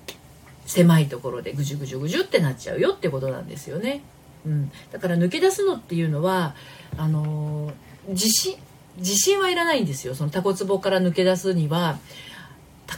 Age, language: 40-59, Japanese